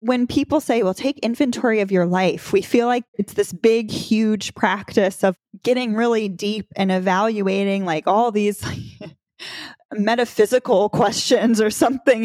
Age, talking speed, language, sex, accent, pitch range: 20-39, 145 wpm, English, female, American, 200-260 Hz